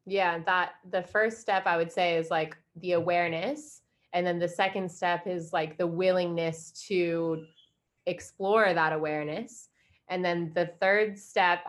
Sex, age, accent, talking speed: female, 20-39, American, 155 wpm